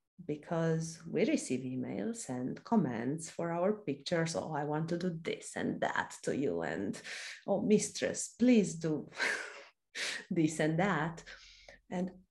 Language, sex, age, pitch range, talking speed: English, female, 30-49, 160-200 Hz, 135 wpm